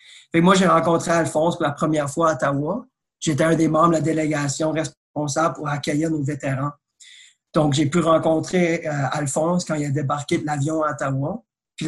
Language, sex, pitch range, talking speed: French, male, 145-165 Hz, 190 wpm